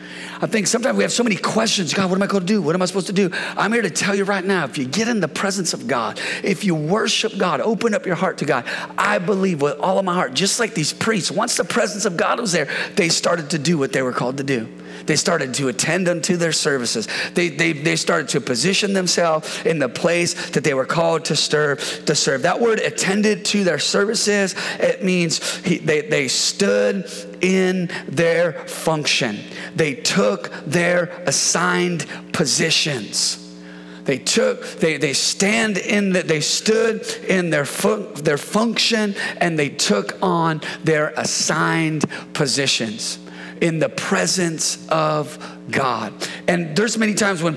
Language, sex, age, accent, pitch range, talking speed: English, male, 30-49, American, 150-195 Hz, 185 wpm